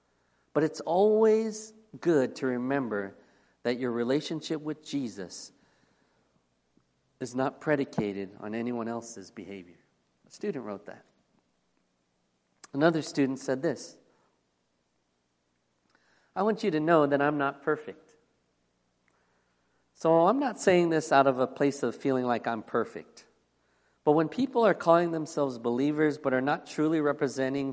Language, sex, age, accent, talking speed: English, male, 50-69, American, 130 wpm